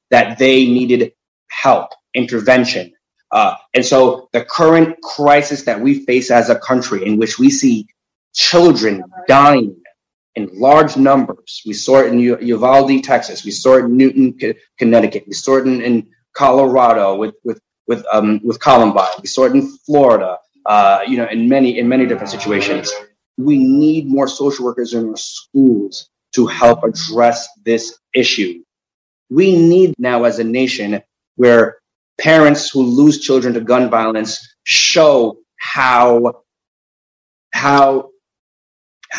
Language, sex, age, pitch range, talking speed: English, male, 30-49, 120-150 Hz, 145 wpm